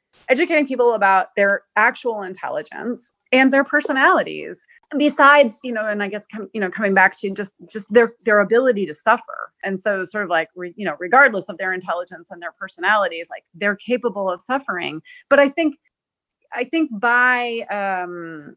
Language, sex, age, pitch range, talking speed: English, female, 30-49, 190-250 Hz, 180 wpm